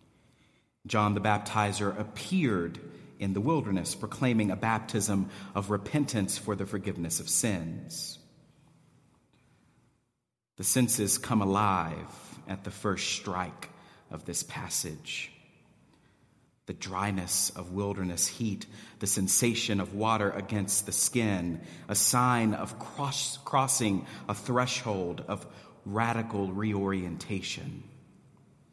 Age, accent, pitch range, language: 40-59, American, 100-120 Hz, English